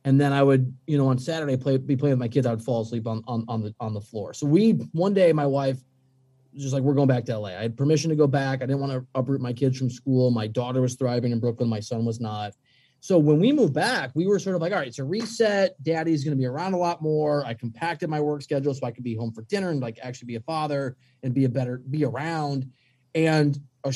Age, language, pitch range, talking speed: 30-49, English, 130-180 Hz, 285 wpm